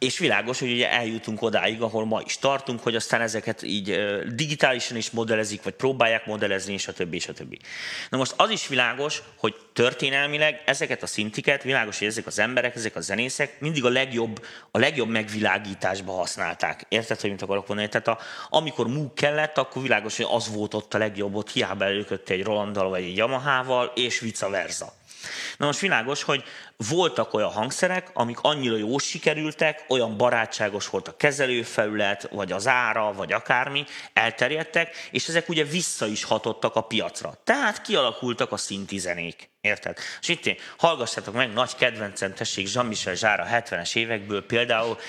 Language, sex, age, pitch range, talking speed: Hungarian, male, 30-49, 105-130 Hz, 165 wpm